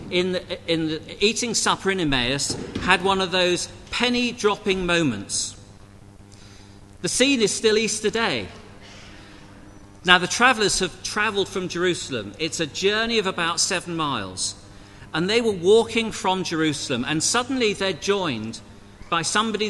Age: 50-69